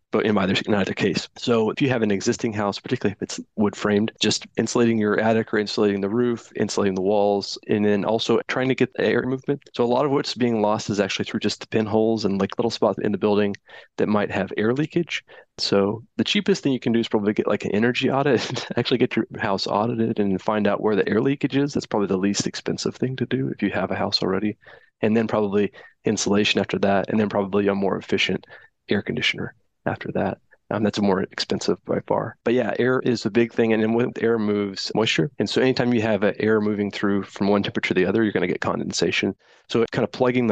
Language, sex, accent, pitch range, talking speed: English, male, American, 100-120 Hz, 235 wpm